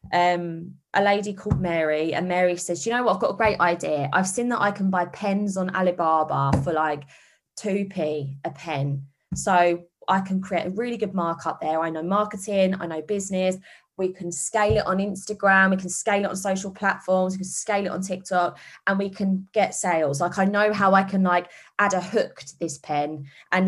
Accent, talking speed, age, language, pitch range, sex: British, 210 wpm, 20-39, English, 165-200 Hz, female